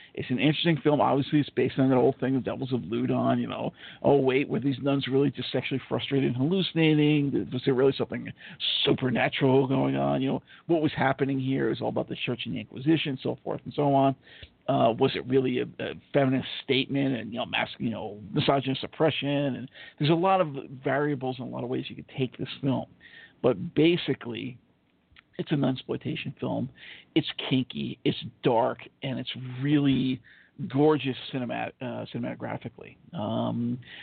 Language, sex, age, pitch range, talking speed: English, male, 50-69, 130-145 Hz, 185 wpm